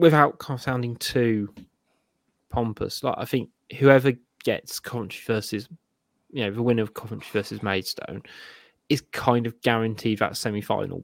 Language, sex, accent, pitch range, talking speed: English, male, British, 120-160 Hz, 140 wpm